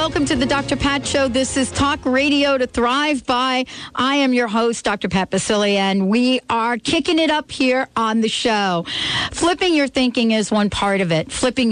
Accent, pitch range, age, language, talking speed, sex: American, 200-255 Hz, 50-69, English, 200 wpm, female